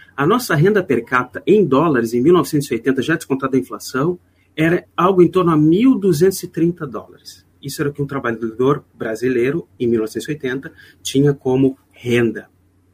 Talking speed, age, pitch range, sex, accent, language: 150 wpm, 40-59, 115-165 Hz, male, Brazilian, Portuguese